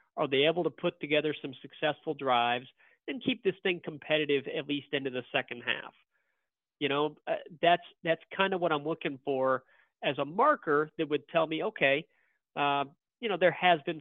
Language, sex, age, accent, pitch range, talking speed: English, male, 40-59, American, 135-170 Hz, 195 wpm